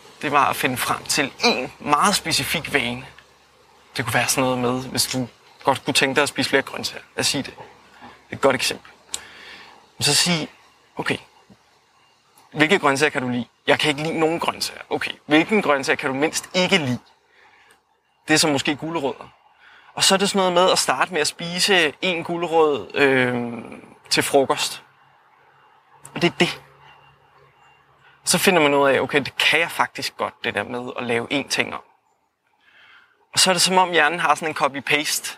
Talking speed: 190 wpm